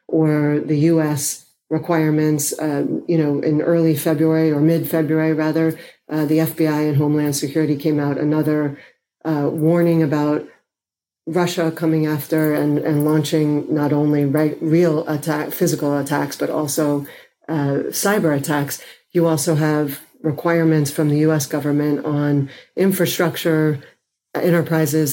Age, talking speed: 40-59, 130 wpm